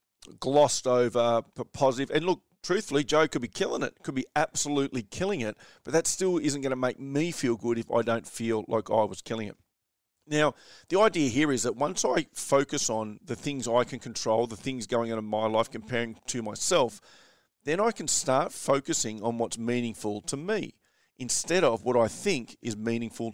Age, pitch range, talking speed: 40-59, 115-140 Hz, 200 wpm